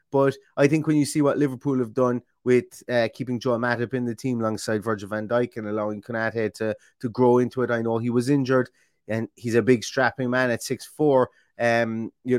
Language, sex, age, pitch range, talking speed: English, male, 30-49, 105-125 Hz, 220 wpm